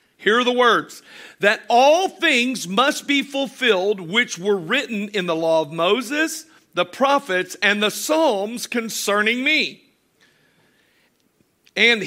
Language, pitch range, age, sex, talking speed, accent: English, 195-255 Hz, 50-69, male, 130 wpm, American